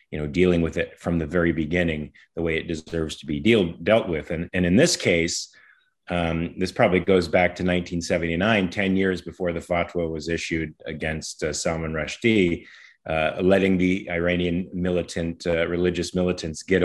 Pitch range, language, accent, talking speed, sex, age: 85-95 Hz, English, American, 180 wpm, male, 30-49